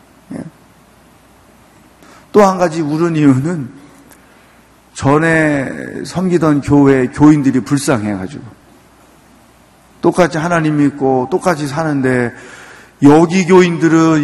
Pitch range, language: 130-170 Hz, Korean